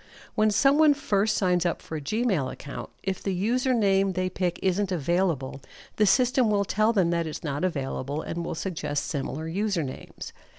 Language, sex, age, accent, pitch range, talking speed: English, female, 60-79, American, 150-200 Hz, 170 wpm